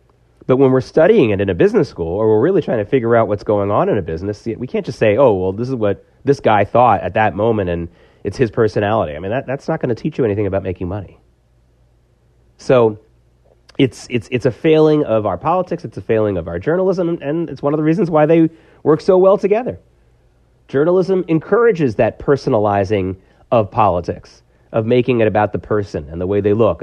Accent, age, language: American, 30-49, English